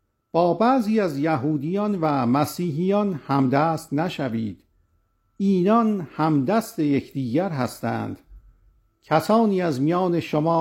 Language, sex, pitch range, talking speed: Persian, male, 120-175 Hz, 90 wpm